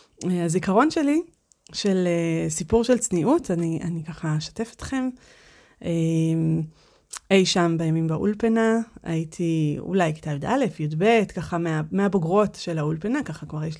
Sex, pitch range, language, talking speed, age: female, 170-220 Hz, Hebrew, 120 wpm, 30-49